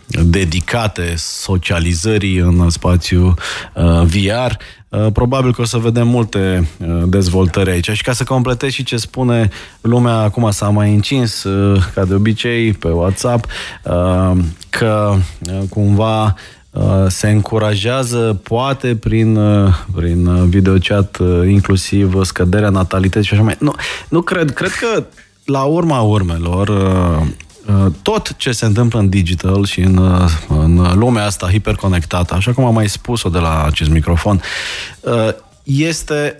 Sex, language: male, Romanian